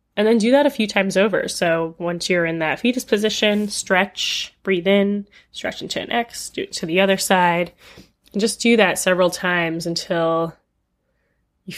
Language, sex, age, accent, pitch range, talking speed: English, female, 10-29, American, 165-200 Hz, 185 wpm